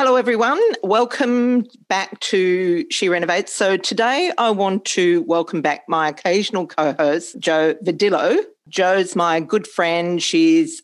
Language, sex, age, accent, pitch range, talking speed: English, female, 40-59, Australian, 165-235 Hz, 135 wpm